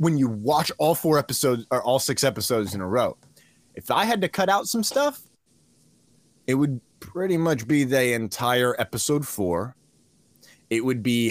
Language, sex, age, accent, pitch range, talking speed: English, male, 20-39, American, 110-170 Hz, 175 wpm